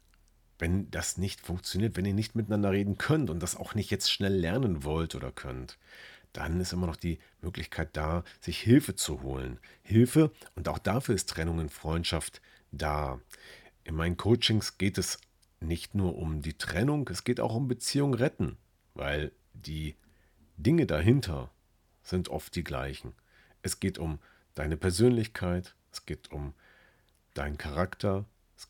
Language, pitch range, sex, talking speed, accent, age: German, 75-105 Hz, male, 155 wpm, German, 40-59